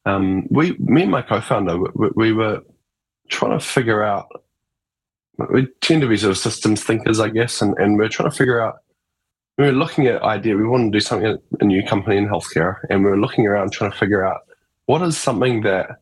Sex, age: male, 20-39